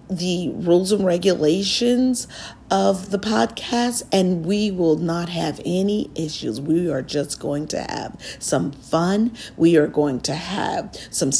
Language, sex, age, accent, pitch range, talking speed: English, female, 50-69, American, 160-215 Hz, 145 wpm